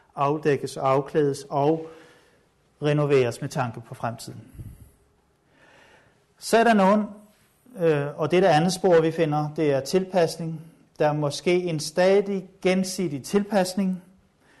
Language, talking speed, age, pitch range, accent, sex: Danish, 125 wpm, 60-79, 145-190 Hz, native, male